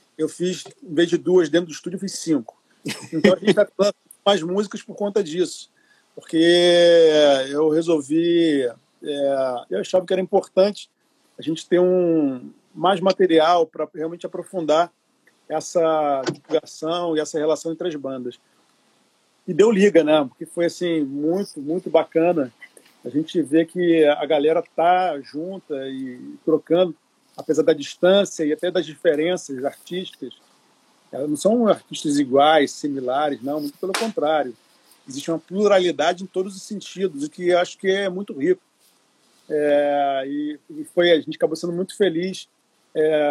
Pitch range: 150-185 Hz